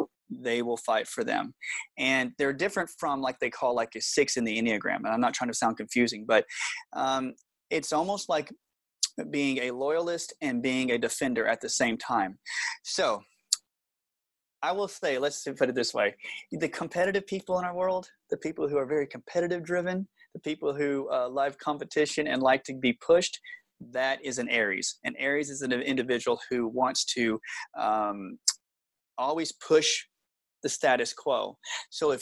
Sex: male